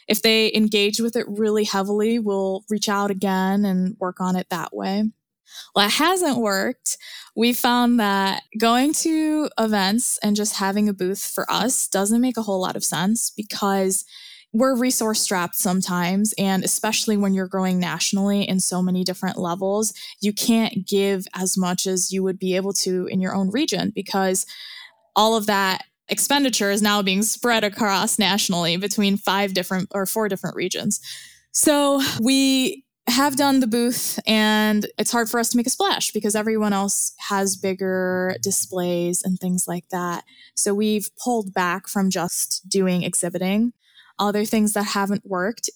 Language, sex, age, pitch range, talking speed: English, female, 10-29, 190-225 Hz, 170 wpm